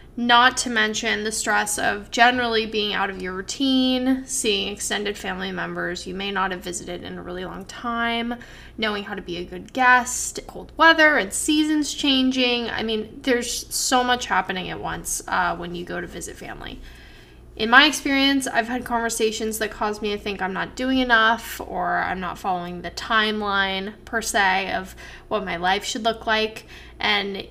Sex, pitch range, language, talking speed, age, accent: female, 205-255 Hz, English, 185 wpm, 10-29, American